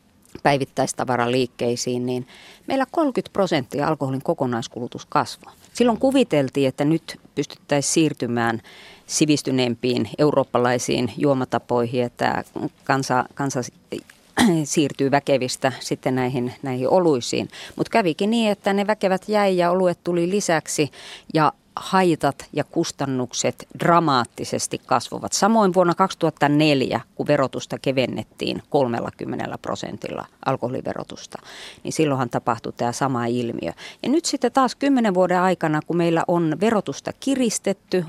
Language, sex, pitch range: Finnish, female, 135-215 Hz